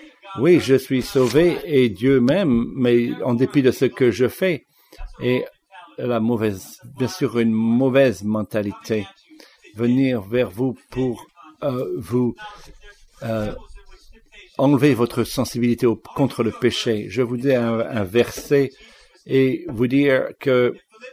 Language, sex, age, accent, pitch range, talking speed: English, male, 60-79, French, 120-140 Hz, 135 wpm